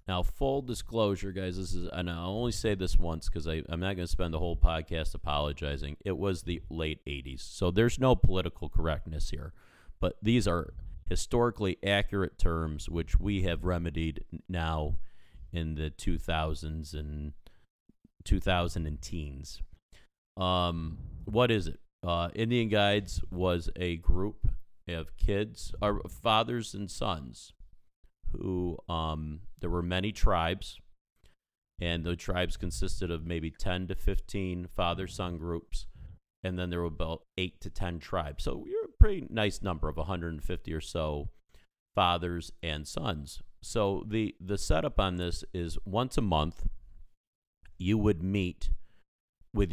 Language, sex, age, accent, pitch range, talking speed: English, male, 40-59, American, 80-95 Hz, 145 wpm